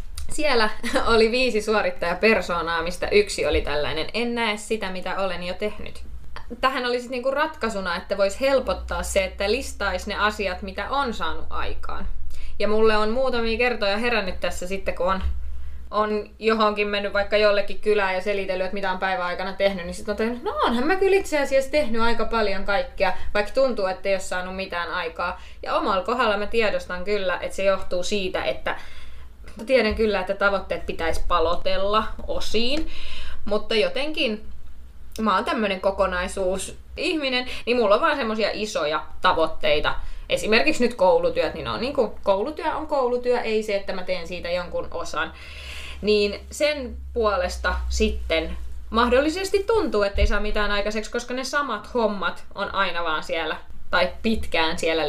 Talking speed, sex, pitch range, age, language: 160 wpm, female, 185-240 Hz, 20-39, Finnish